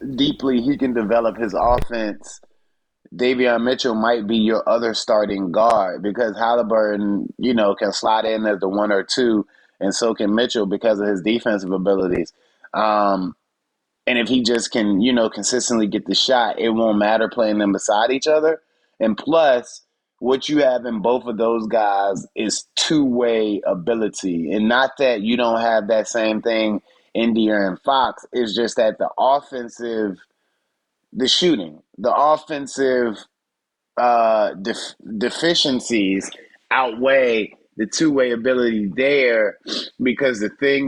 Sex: male